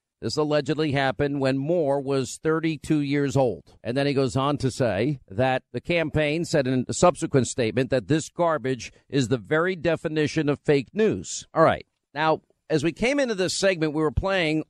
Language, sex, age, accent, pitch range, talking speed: English, male, 50-69, American, 140-170 Hz, 190 wpm